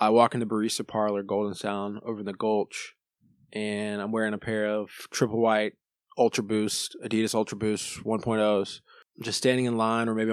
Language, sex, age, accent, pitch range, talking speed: English, male, 20-39, American, 105-125 Hz, 185 wpm